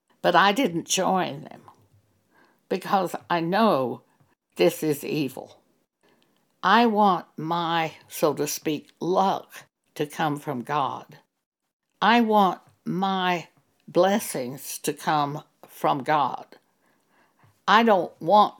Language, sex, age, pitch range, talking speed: English, female, 60-79, 150-210 Hz, 105 wpm